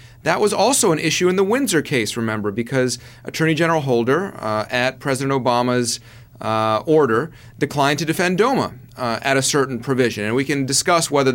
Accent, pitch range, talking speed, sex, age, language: American, 120-140 Hz, 180 wpm, male, 40-59, English